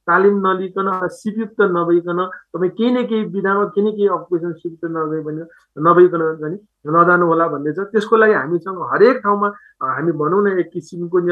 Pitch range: 160-205 Hz